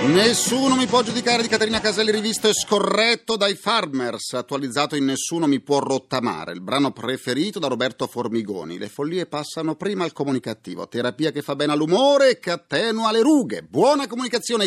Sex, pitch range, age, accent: male, 135-205 Hz, 40-59, native